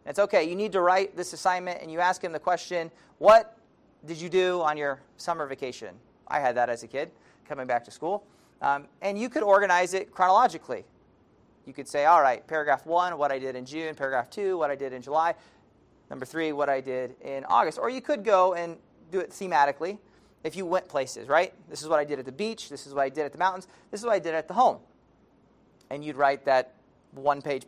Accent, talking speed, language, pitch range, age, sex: American, 230 wpm, English, 140-185 Hz, 40-59, male